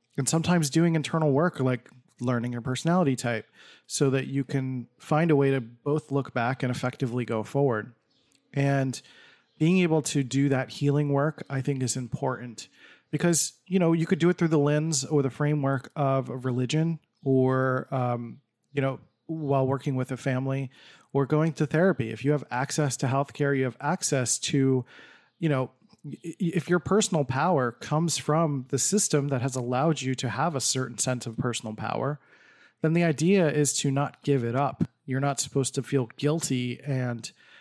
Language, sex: English, male